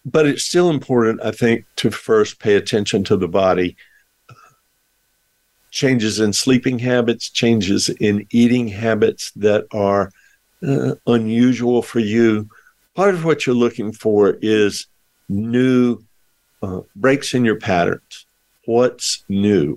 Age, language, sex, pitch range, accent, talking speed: 50-69, English, male, 105-125 Hz, American, 130 wpm